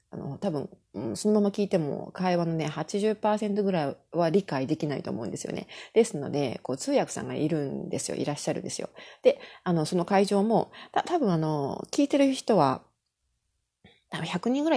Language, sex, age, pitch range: Japanese, female, 30-49, 150-210 Hz